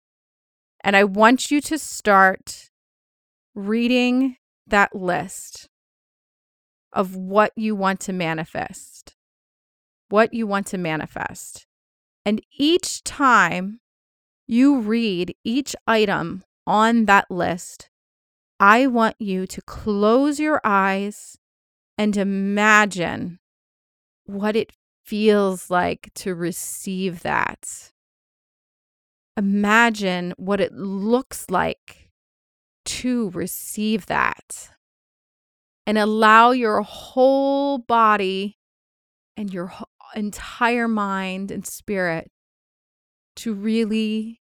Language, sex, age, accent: English, female, 30-49, American